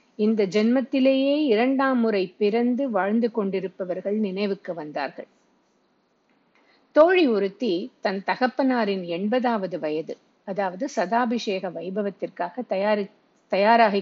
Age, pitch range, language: 50-69, 190-240 Hz, Tamil